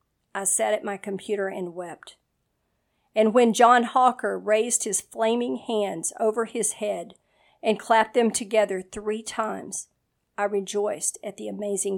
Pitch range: 200-225 Hz